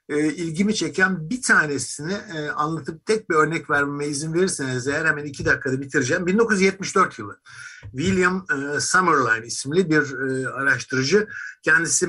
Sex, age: male, 60-79